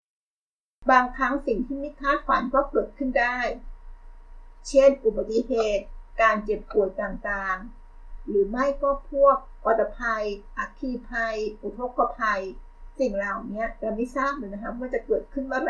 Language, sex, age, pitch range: Thai, female, 60-79, 205-265 Hz